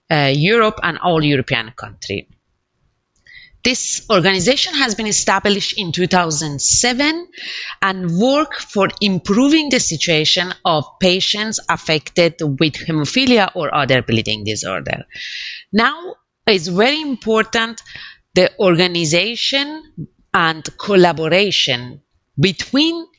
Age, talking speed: 30-49, 95 wpm